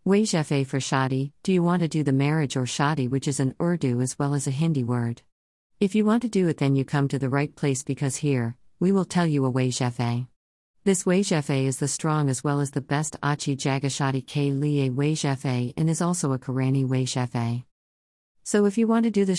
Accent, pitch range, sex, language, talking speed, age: American, 130-160 Hz, female, English, 220 wpm, 50-69